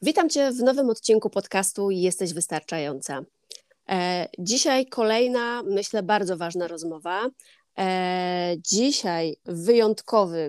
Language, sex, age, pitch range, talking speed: Polish, female, 20-39, 185-235 Hz, 90 wpm